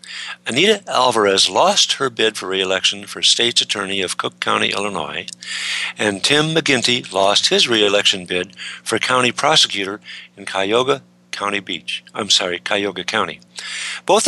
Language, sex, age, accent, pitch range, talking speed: English, male, 60-79, American, 95-140 Hz, 140 wpm